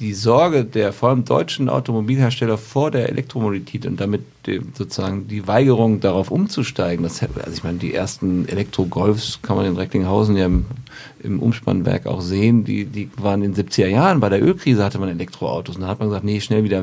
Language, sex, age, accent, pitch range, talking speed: German, male, 50-69, German, 100-125 Hz, 195 wpm